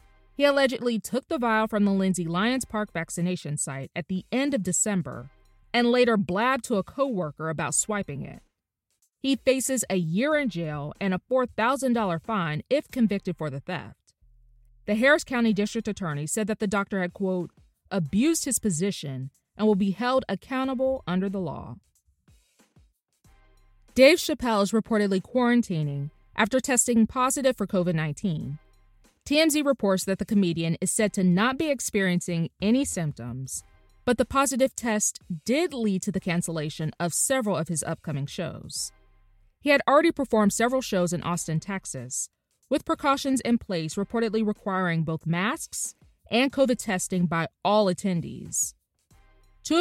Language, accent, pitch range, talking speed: English, American, 165-245 Hz, 150 wpm